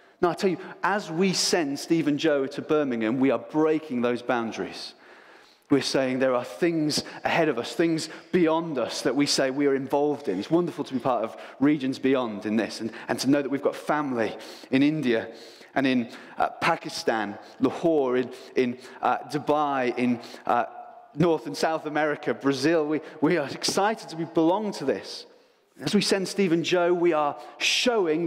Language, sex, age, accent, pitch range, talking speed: English, male, 30-49, British, 130-175 Hz, 185 wpm